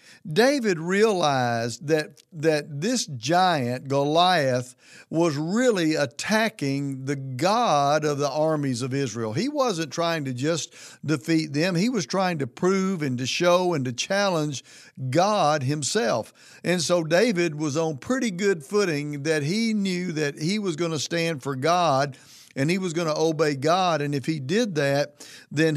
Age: 50-69